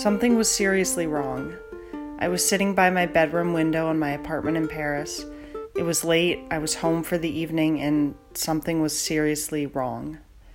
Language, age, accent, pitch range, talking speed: English, 30-49, American, 155-185 Hz, 170 wpm